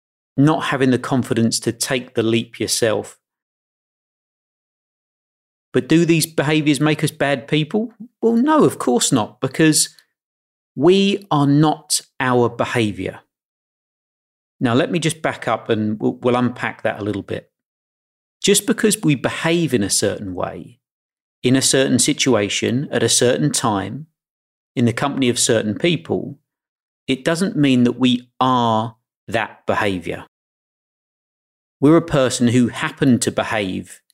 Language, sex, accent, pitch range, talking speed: English, male, British, 115-150 Hz, 140 wpm